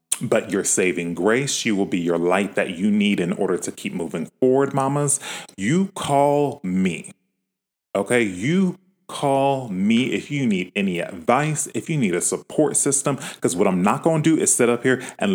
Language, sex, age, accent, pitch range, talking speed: English, male, 30-49, American, 90-145 Hz, 190 wpm